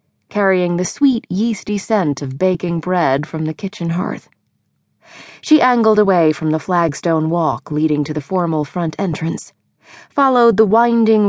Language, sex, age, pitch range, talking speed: English, female, 30-49, 165-230 Hz, 150 wpm